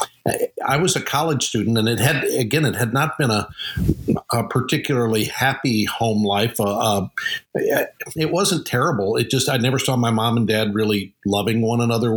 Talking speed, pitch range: 180 wpm, 105-125 Hz